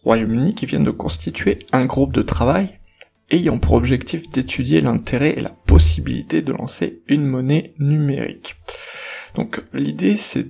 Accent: French